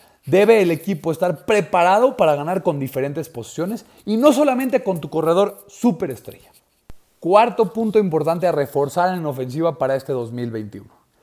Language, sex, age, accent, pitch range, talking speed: Spanish, male, 30-49, Mexican, 160-230 Hz, 145 wpm